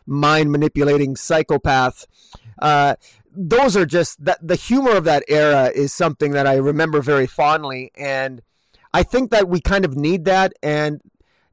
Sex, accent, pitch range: male, American, 145-175 Hz